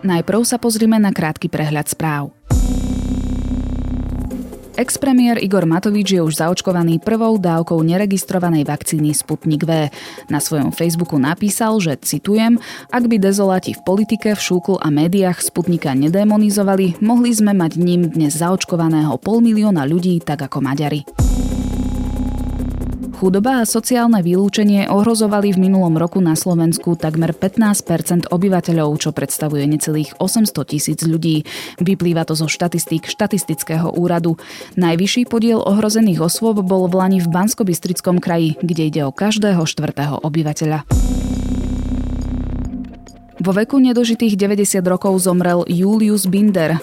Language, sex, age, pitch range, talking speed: Slovak, female, 20-39, 150-200 Hz, 125 wpm